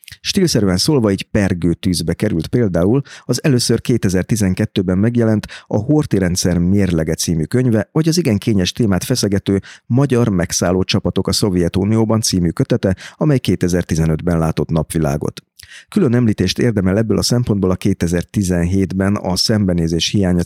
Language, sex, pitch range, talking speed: Hungarian, male, 90-115 Hz, 130 wpm